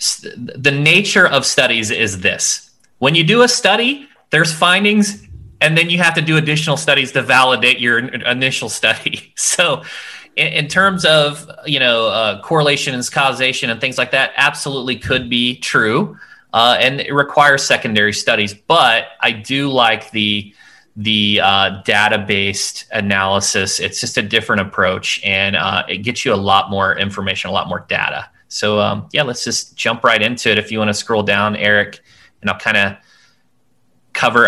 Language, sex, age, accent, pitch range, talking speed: English, male, 30-49, American, 100-135 Hz, 170 wpm